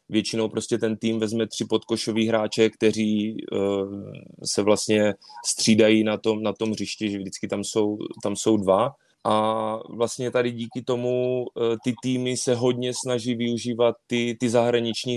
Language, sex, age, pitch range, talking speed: Czech, male, 20-39, 105-115 Hz, 150 wpm